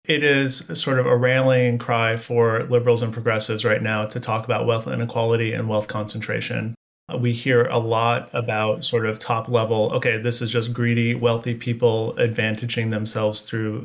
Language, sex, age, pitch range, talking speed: English, male, 30-49, 110-125 Hz, 175 wpm